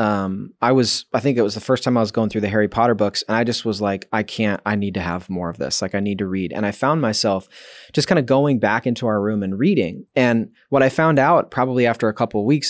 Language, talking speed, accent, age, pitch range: English, 295 wpm, American, 20-39, 105-130 Hz